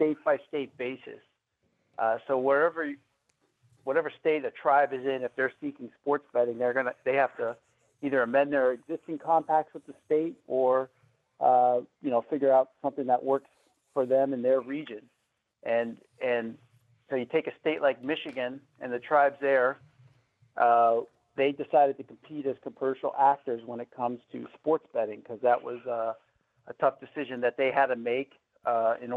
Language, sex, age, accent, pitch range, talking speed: English, male, 50-69, American, 120-140 Hz, 175 wpm